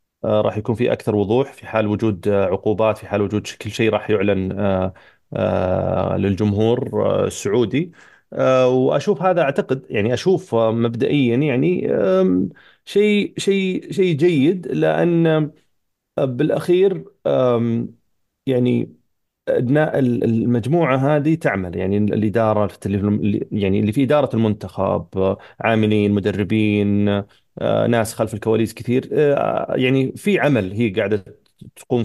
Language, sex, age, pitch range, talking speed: Arabic, male, 30-49, 100-125 Hz, 100 wpm